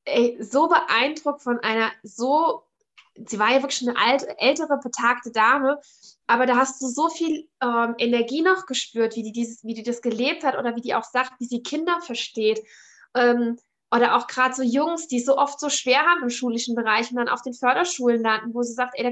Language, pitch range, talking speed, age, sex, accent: German, 235-275 Hz, 215 wpm, 20-39, female, German